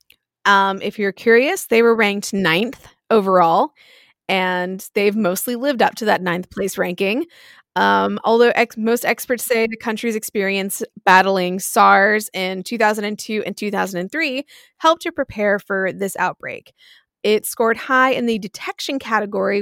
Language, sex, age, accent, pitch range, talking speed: English, female, 20-39, American, 195-245 Hz, 140 wpm